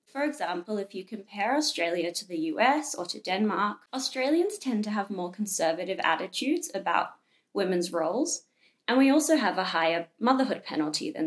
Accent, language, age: Australian, English, 20-39